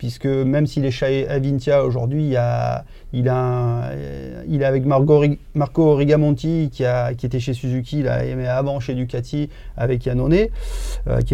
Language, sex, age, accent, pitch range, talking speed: French, male, 30-49, French, 125-145 Hz, 155 wpm